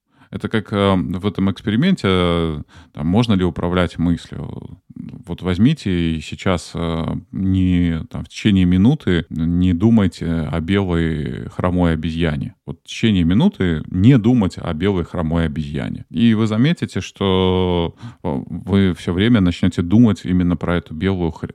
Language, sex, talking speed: Russian, male, 135 wpm